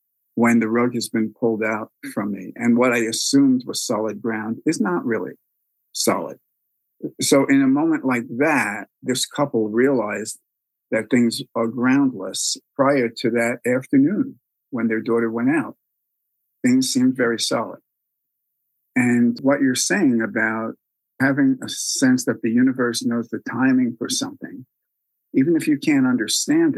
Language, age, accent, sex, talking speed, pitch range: English, 50-69, American, male, 150 wpm, 115-150 Hz